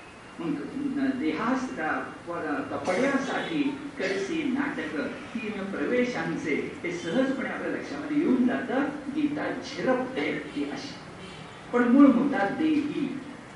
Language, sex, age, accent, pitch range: Hindi, male, 50-69, native, 235-280 Hz